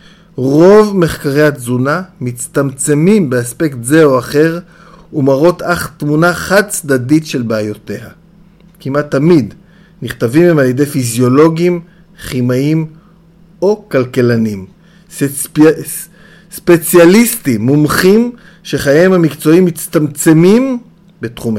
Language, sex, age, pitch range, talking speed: Hebrew, male, 50-69, 135-180 Hz, 90 wpm